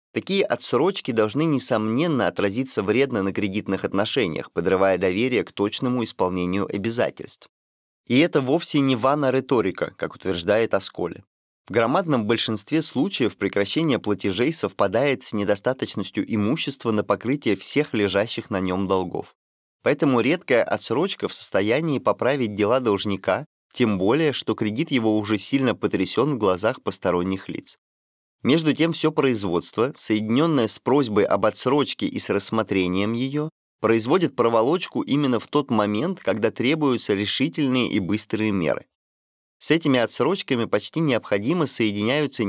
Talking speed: 130 wpm